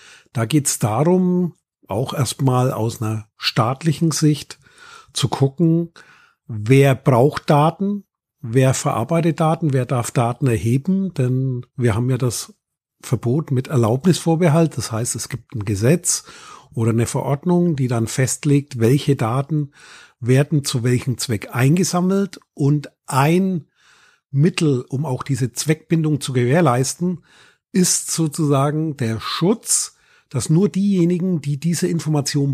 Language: German